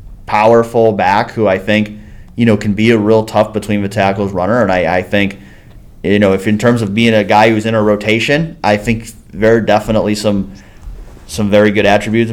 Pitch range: 100-120 Hz